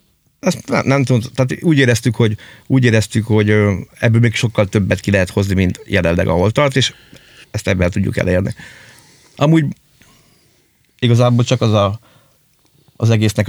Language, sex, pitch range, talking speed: Hungarian, male, 105-125 Hz, 145 wpm